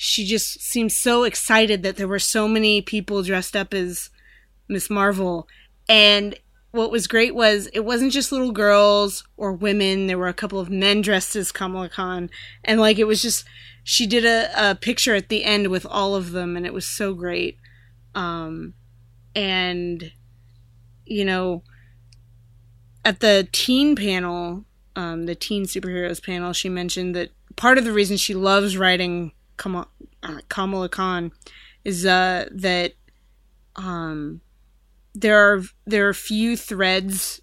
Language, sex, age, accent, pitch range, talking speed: English, female, 20-39, American, 175-205 Hz, 150 wpm